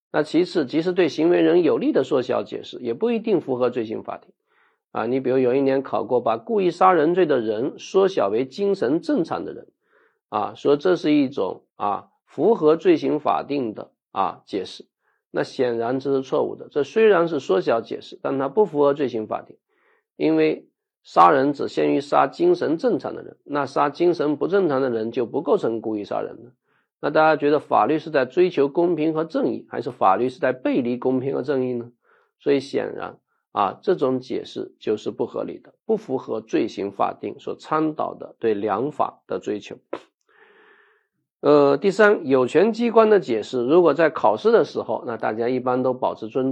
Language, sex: Chinese, male